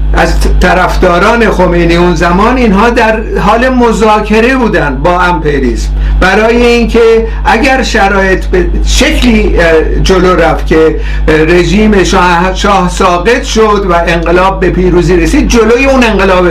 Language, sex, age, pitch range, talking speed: Persian, male, 60-79, 170-225 Hz, 120 wpm